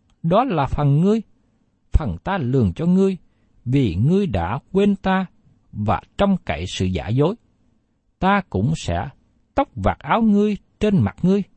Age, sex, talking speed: 60-79, male, 155 wpm